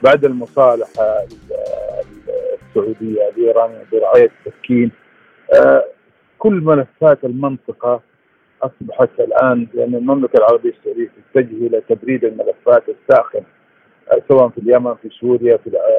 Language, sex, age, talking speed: Arabic, male, 50-69, 95 wpm